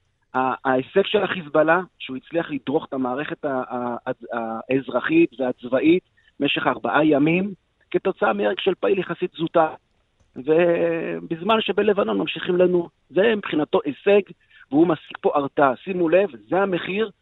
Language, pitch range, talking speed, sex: Hebrew, 145-195 Hz, 120 wpm, male